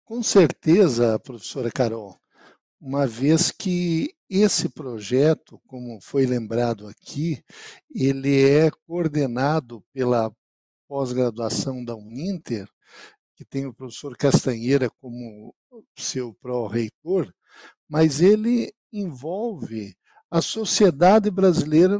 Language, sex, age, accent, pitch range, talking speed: Portuguese, male, 60-79, Brazilian, 130-190 Hz, 95 wpm